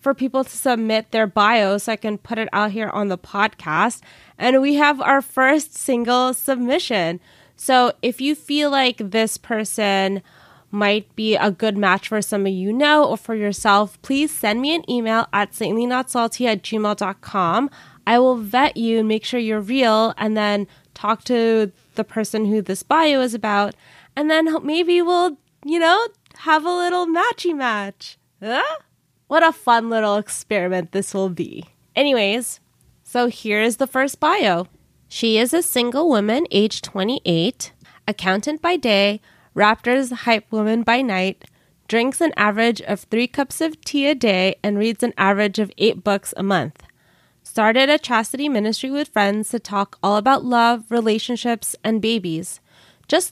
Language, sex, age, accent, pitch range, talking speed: English, female, 20-39, American, 205-265 Hz, 170 wpm